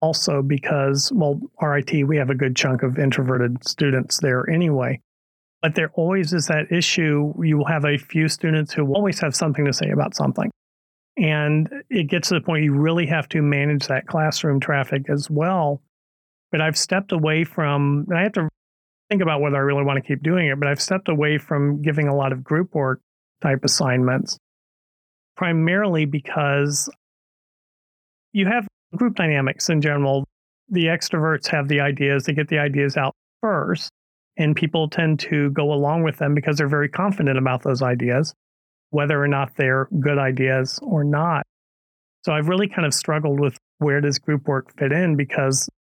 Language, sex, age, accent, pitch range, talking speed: English, male, 40-59, American, 140-165 Hz, 180 wpm